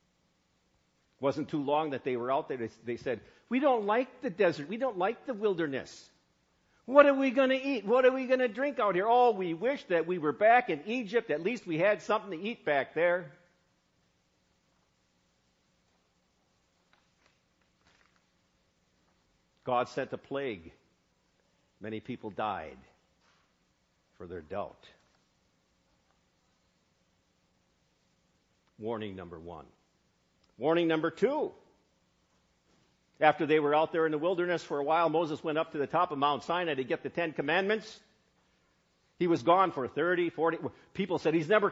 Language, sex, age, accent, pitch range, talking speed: English, male, 50-69, American, 140-200 Hz, 150 wpm